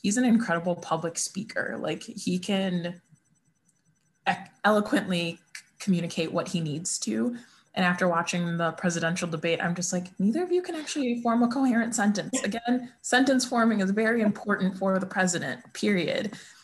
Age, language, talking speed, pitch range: 20-39, English, 150 wpm, 170-205 Hz